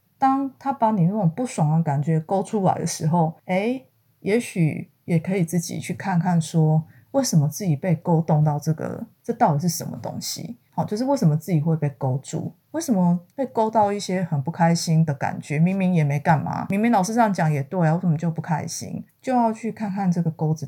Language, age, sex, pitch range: Chinese, 30-49, female, 160-200 Hz